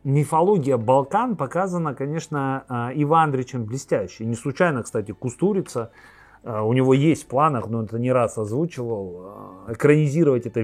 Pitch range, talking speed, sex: 120-160 Hz, 125 wpm, male